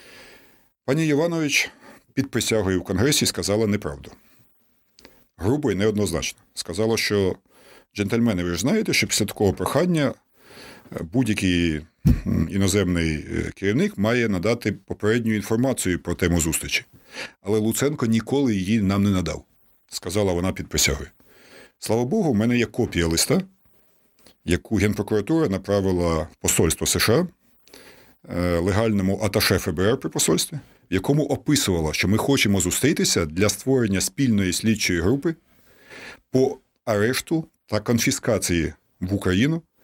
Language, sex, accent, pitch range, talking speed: Ukrainian, male, native, 90-125 Hz, 115 wpm